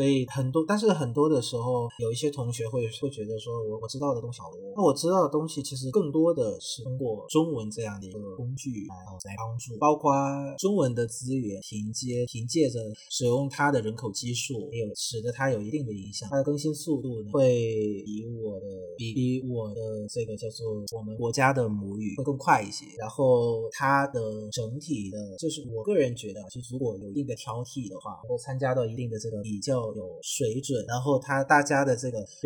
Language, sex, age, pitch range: Vietnamese, male, 30-49, 110-140 Hz